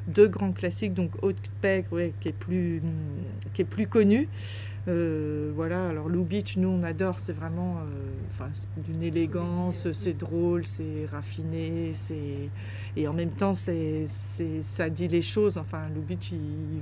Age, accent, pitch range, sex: 40-59, French, 90-100 Hz, female